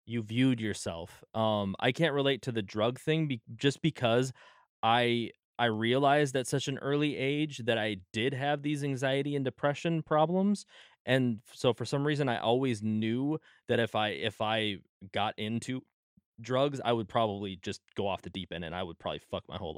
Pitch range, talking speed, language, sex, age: 105-140 Hz, 190 wpm, English, male, 20-39